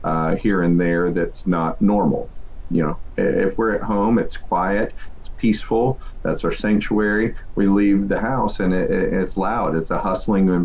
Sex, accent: male, American